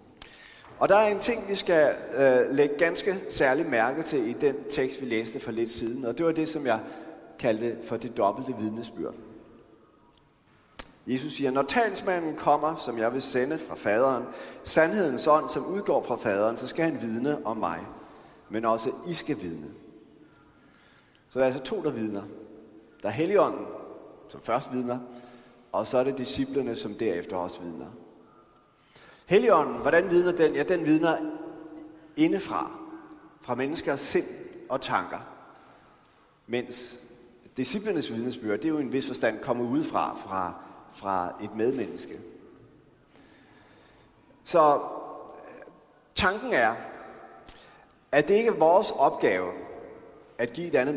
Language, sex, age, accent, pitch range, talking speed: Danish, male, 30-49, native, 120-165 Hz, 145 wpm